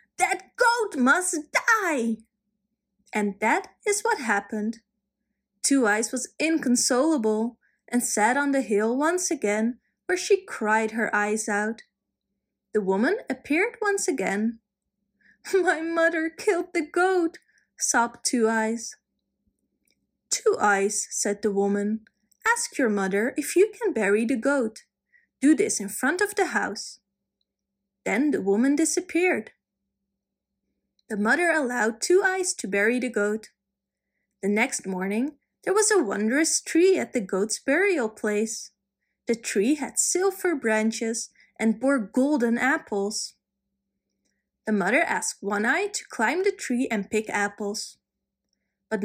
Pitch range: 210-325 Hz